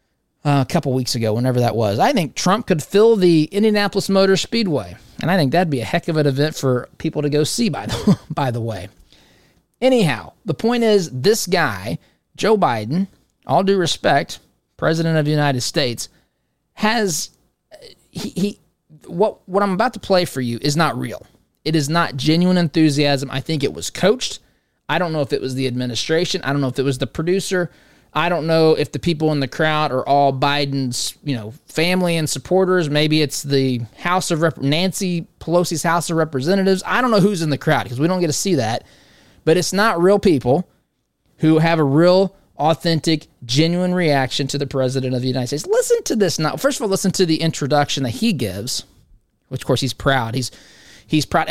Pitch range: 135-185 Hz